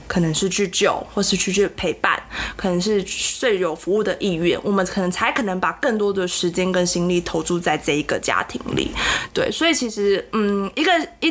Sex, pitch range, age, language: female, 180-220 Hz, 20-39, Chinese